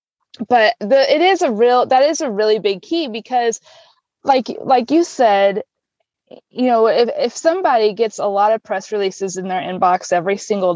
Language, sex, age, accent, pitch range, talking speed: English, female, 20-39, American, 200-245 Hz, 185 wpm